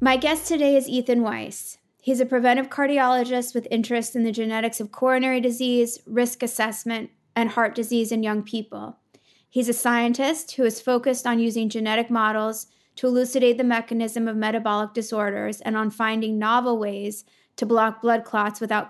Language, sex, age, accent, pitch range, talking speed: English, female, 20-39, American, 215-250 Hz, 170 wpm